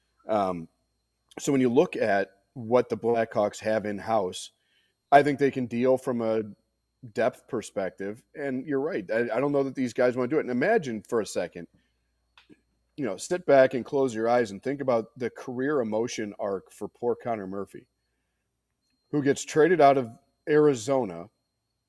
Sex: male